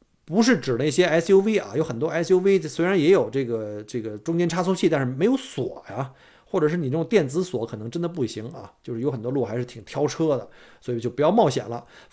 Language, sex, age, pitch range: Chinese, male, 50-69, 125-190 Hz